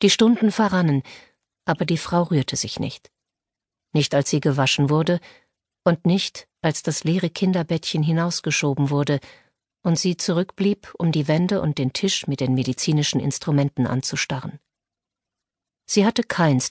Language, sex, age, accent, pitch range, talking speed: German, female, 50-69, German, 140-180 Hz, 140 wpm